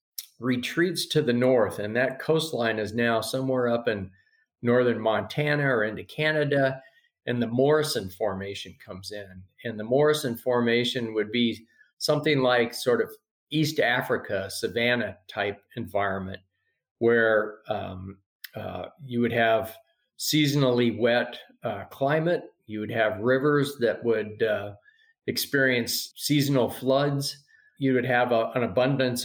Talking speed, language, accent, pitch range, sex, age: 130 wpm, English, American, 110-140 Hz, male, 40-59